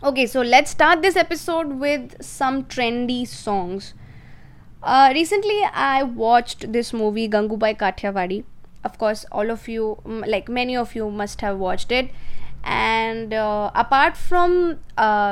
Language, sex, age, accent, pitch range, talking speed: Hindi, female, 20-39, native, 210-275 Hz, 140 wpm